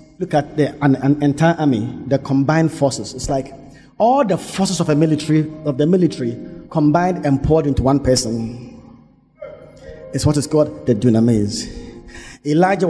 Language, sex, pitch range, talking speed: English, male, 135-170 Hz, 160 wpm